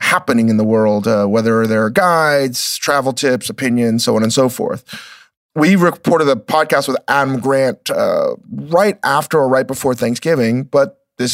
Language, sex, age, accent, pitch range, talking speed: English, male, 30-49, American, 120-135 Hz, 175 wpm